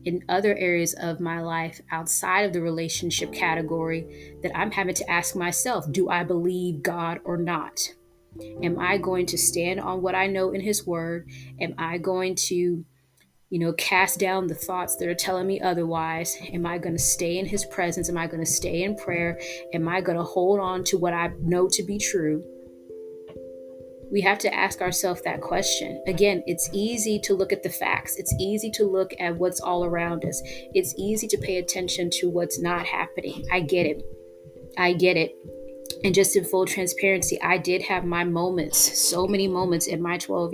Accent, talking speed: American, 195 wpm